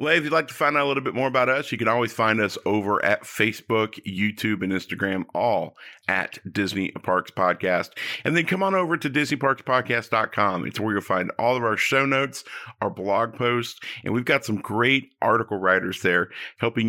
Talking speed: 200 wpm